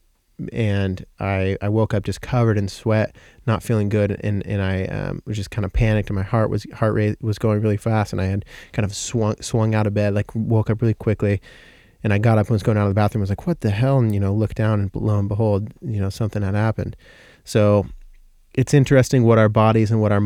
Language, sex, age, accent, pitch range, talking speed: English, male, 30-49, American, 100-120 Hz, 255 wpm